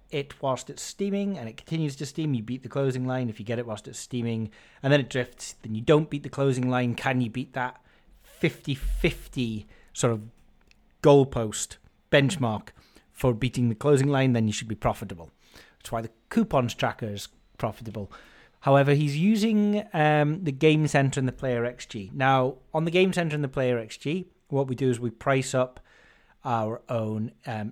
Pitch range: 115-140 Hz